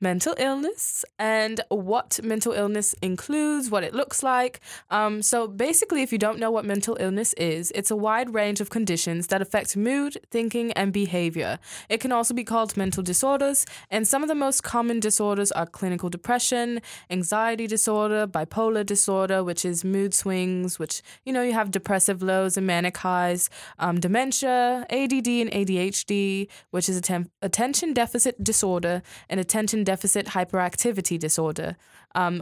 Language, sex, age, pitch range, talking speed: English, female, 20-39, 185-235 Hz, 160 wpm